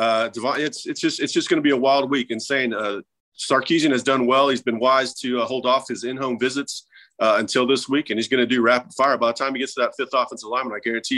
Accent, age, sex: American, 30-49, male